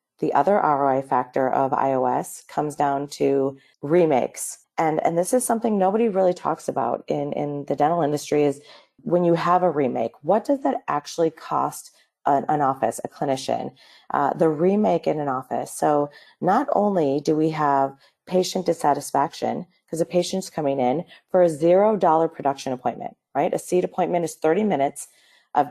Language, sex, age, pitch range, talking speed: English, female, 30-49, 140-175 Hz, 170 wpm